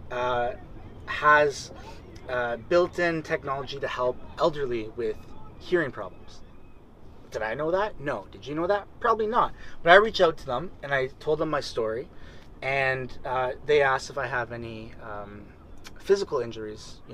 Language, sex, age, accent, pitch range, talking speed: English, male, 30-49, American, 110-155 Hz, 165 wpm